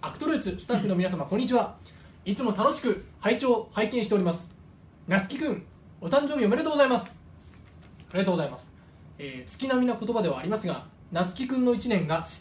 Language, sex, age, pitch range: Japanese, male, 20-39, 150-220 Hz